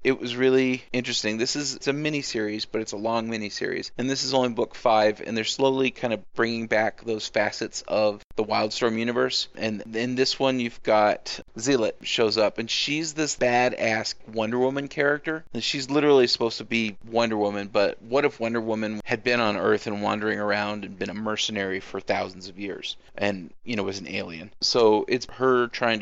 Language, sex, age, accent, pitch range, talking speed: English, male, 30-49, American, 105-125 Hz, 200 wpm